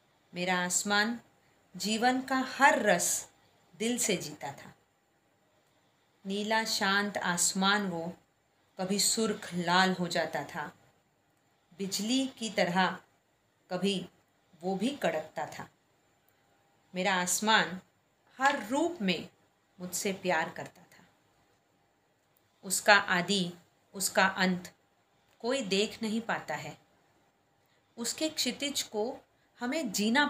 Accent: native